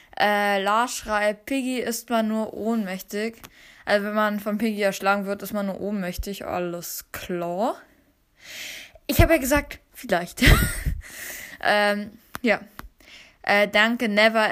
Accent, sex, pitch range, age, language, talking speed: German, female, 200-235 Hz, 10-29, Italian, 130 wpm